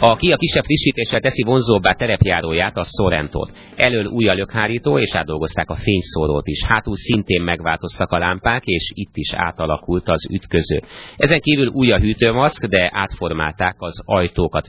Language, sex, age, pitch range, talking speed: Hungarian, male, 30-49, 80-105 Hz, 150 wpm